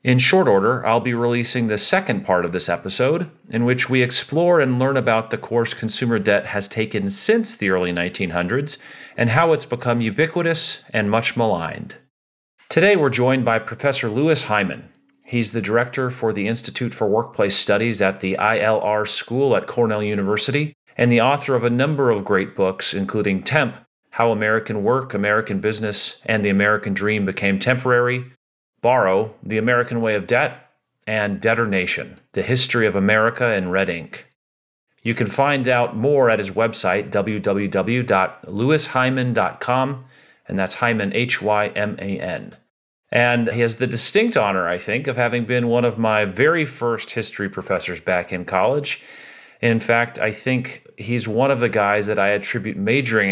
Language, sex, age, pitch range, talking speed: English, male, 40-59, 105-125 Hz, 165 wpm